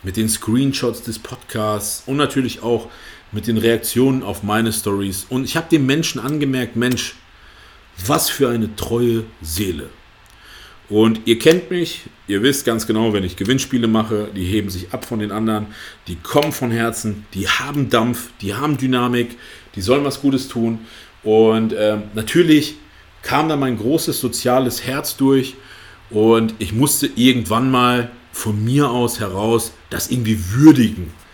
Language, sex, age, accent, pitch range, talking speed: German, male, 40-59, German, 110-140 Hz, 155 wpm